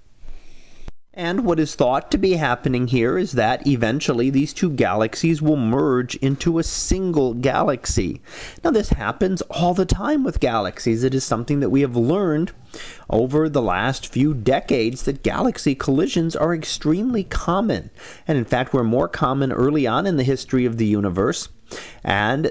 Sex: male